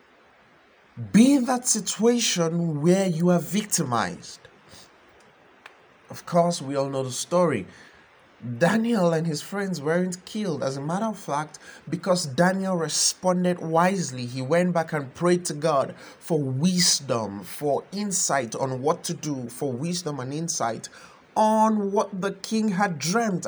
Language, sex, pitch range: English, male, 160-200 Hz